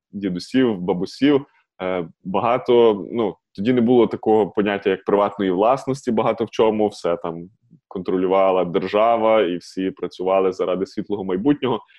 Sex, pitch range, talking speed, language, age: male, 100-120 Hz, 125 wpm, Ukrainian, 20-39